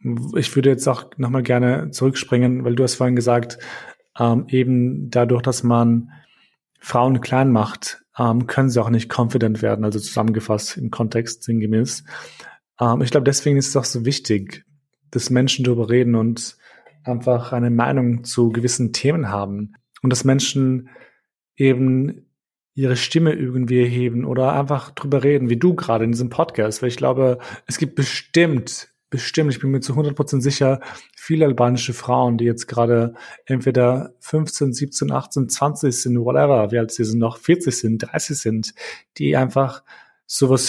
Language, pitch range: German, 115-135 Hz